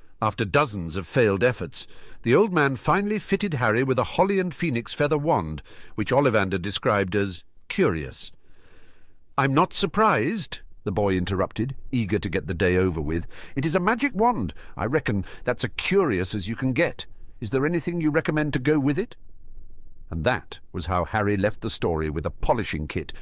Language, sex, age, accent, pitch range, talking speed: English, male, 50-69, British, 85-120 Hz, 185 wpm